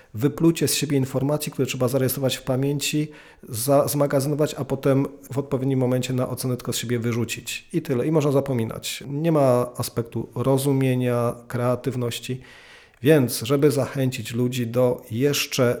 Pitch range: 125-145 Hz